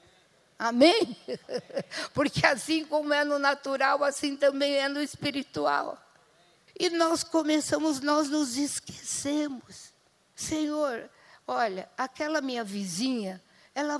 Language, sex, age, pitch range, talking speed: Portuguese, female, 60-79, 225-295 Hz, 105 wpm